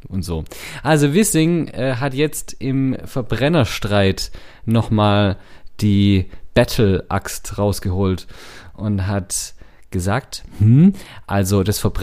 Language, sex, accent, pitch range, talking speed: German, male, German, 95-130 Hz, 95 wpm